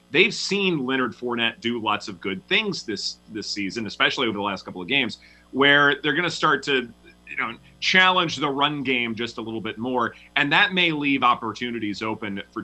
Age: 30-49